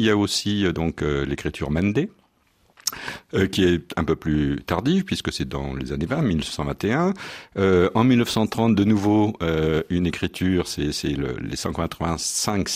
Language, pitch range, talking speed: French, 75-105 Hz, 145 wpm